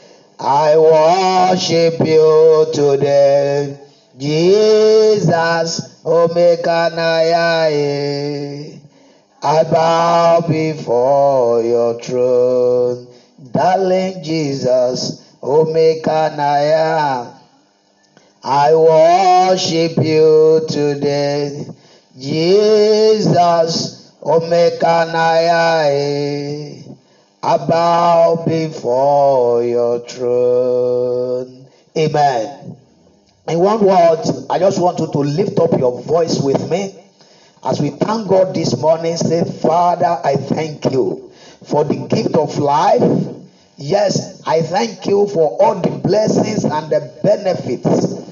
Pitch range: 140-180 Hz